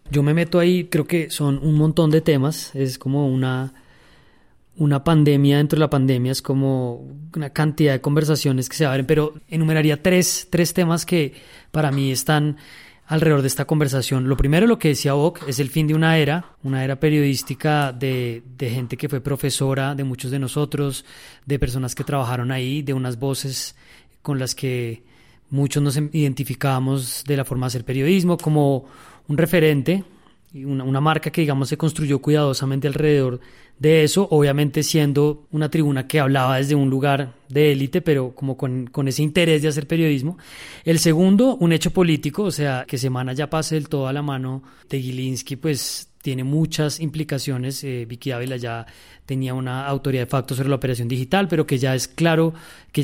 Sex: male